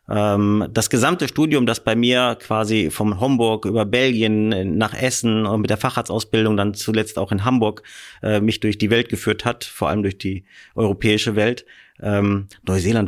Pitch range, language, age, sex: 105-125 Hz, German, 30-49, male